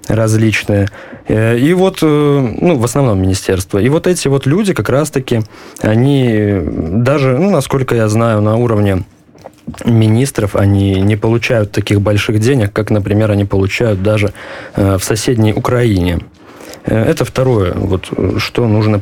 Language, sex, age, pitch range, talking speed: Polish, male, 20-39, 105-130 Hz, 135 wpm